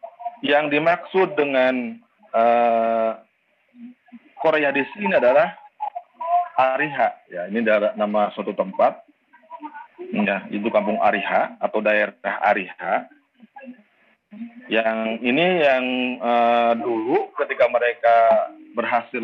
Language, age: Malay, 40-59